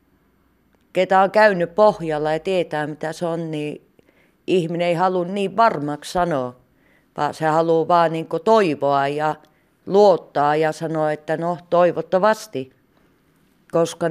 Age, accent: 30-49, native